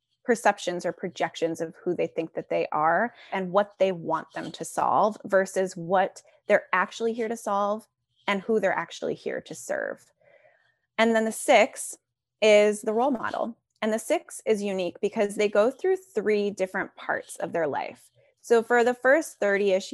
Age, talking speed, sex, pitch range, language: 20-39, 180 wpm, female, 180-225 Hz, English